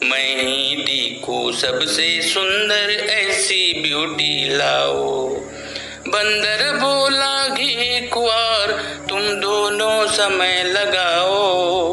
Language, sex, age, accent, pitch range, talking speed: Marathi, male, 60-79, native, 160-220 Hz, 80 wpm